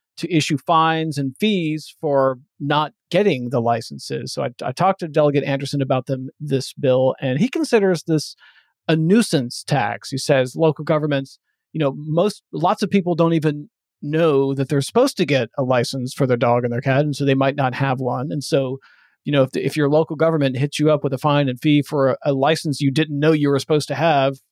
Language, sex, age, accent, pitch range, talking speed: English, male, 40-59, American, 140-165 Hz, 225 wpm